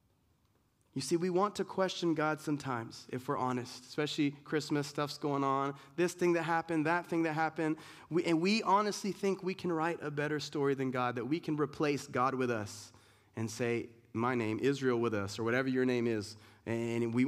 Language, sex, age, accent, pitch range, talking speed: English, male, 30-49, American, 125-170 Hz, 200 wpm